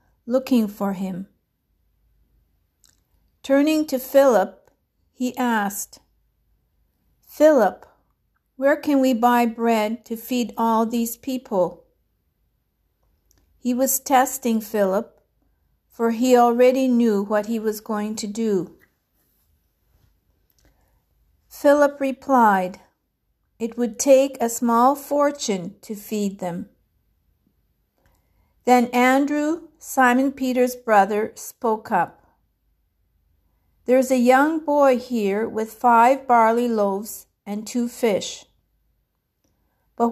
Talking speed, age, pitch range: 95 wpm, 50-69, 200-255 Hz